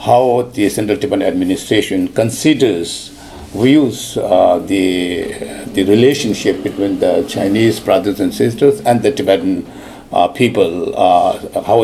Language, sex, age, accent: Chinese, male, 60-79, Indian